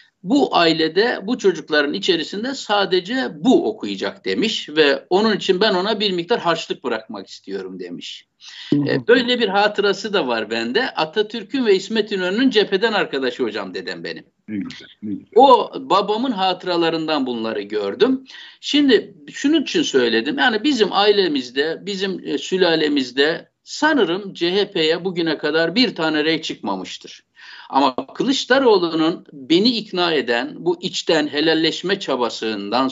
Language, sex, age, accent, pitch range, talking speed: Turkish, male, 60-79, native, 165-235 Hz, 120 wpm